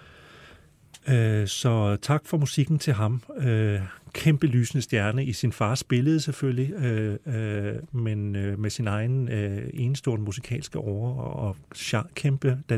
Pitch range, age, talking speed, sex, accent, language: 115-145 Hz, 40-59, 115 wpm, male, native, Danish